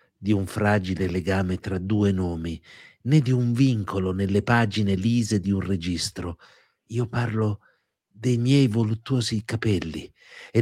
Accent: native